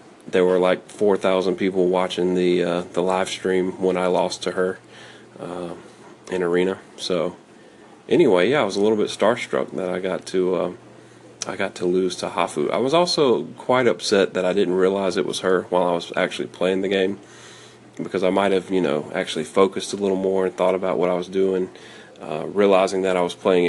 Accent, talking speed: American, 210 wpm